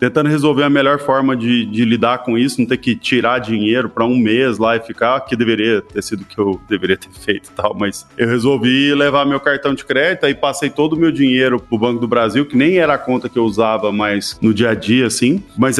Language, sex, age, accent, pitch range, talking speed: Portuguese, male, 20-39, Brazilian, 120-175 Hz, 255 wpm